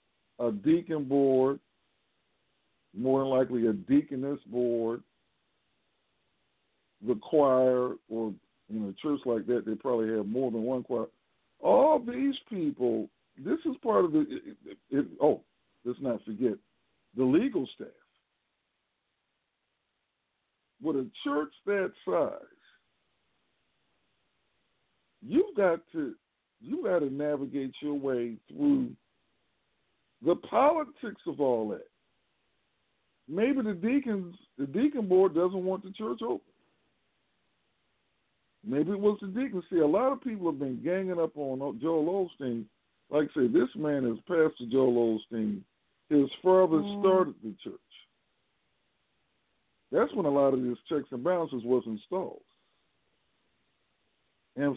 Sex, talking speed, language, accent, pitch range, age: male, 125 wpm, English, American, 125-195 Hz, 60-79